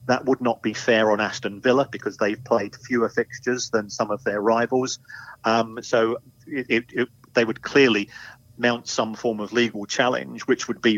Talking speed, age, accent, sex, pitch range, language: 190 wpm, 40-59, British, male, 110-125 Hz, English